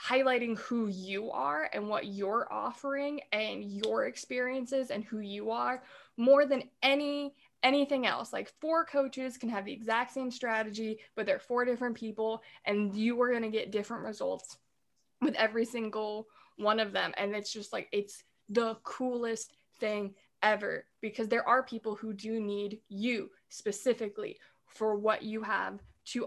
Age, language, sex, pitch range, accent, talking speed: 20-39, English, female, 215-260 Hz, American, 160 wpm